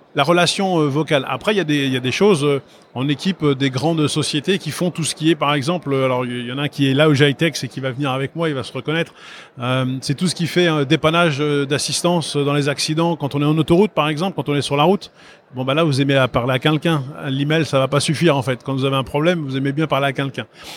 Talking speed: 290 wpm